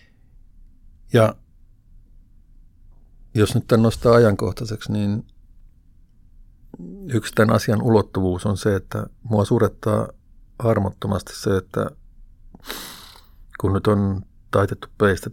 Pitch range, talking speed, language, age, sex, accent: 95-110 Hz, 95 wpm, Finnish, 50-69, male, native